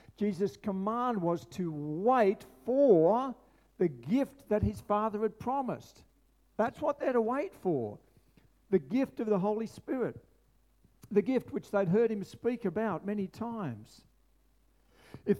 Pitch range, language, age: 150-210 Hz, English, 50-69